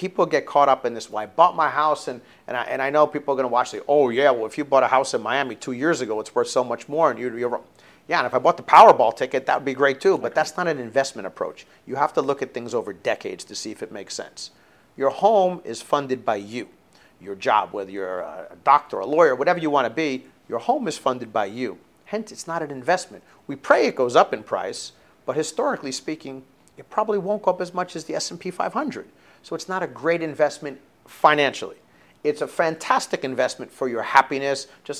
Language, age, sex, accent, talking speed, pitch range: English, 40-59, male, American, 250 wpm, 120-155 Hz